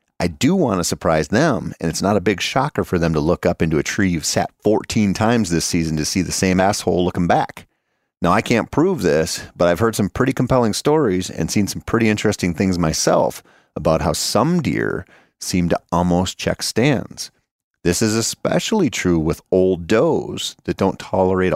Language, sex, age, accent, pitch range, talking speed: English, male, 40-59, American, 85-105 Hz, 200 wpm